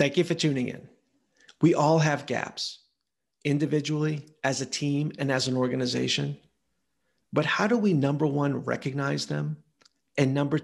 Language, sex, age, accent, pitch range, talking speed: English, male, 50-69, American, 130-155 Hz, 150 wpm